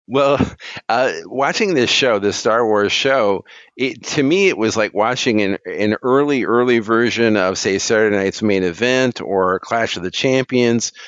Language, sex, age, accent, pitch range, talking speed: English, male, 50-69, American, 100-120 Hz, 175 wpm